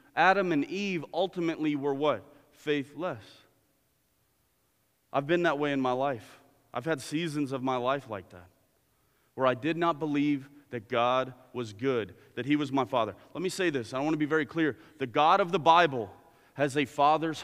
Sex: male